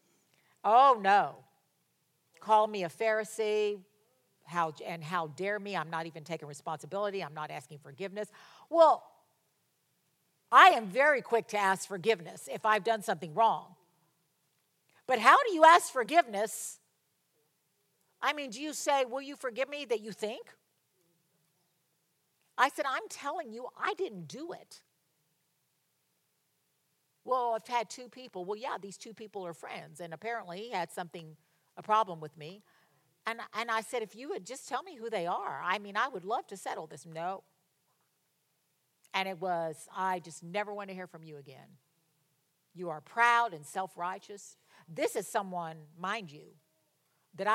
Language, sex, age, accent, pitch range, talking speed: English, female, 50-69, American, 165-225 Hz, 160 wpm